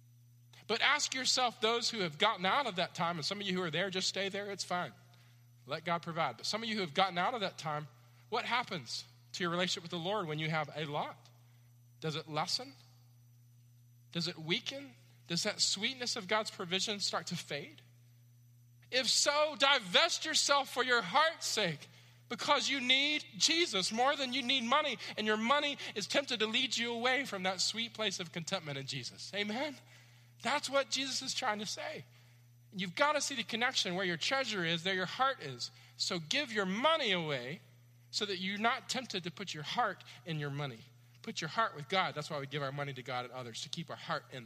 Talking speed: 215 wpm